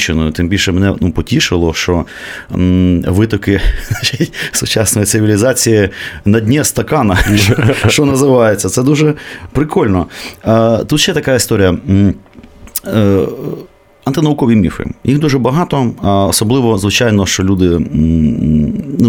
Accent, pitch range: native, 90-120 Hz